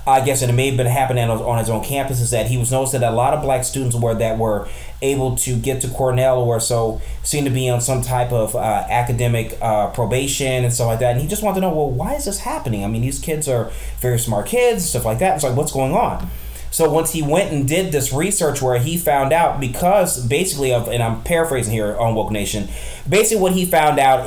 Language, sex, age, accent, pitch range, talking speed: English, male, 20-39, American, 120-160 Hz, 250 wpm